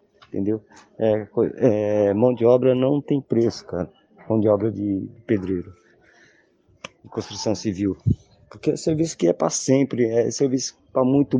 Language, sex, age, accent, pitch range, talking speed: Portuguese, male, 20-39, Brazilian, 110-135 Hz, 155 wpm